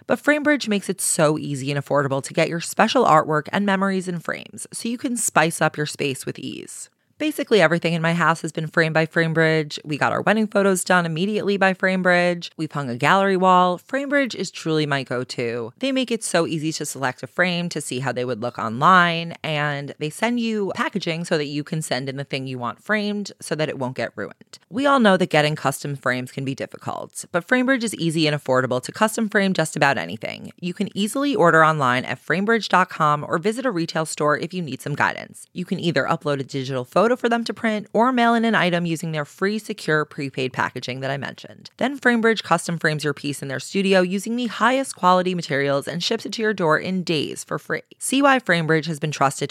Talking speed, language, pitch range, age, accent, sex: 225 wpm, English, 145-200 Hz, 20-39, American, female